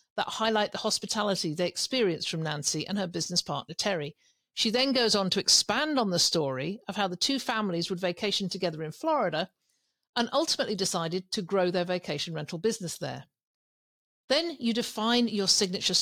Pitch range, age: 175-225 Hz, 50-69